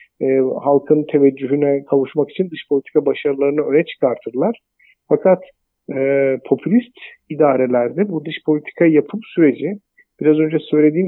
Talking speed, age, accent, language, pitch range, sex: 120 wpm, 50-69, Turkish, German, 135-160 Hz, male